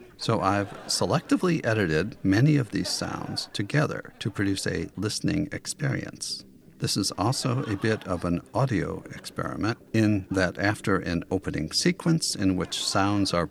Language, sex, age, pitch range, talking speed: English, male, 50-69, 95-135 Hz, 145 wpm